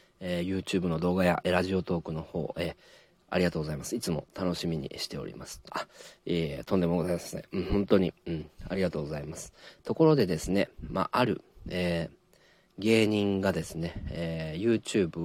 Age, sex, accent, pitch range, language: 40-59, male, native, 85-125 Hz, Japanese